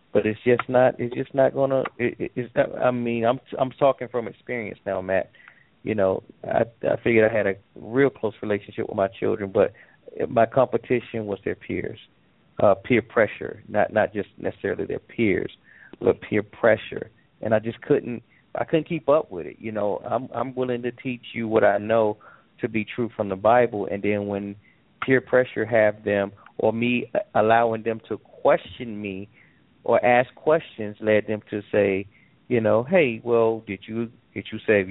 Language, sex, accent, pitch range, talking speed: English, male, American, 105-125 Hz, 185 wpm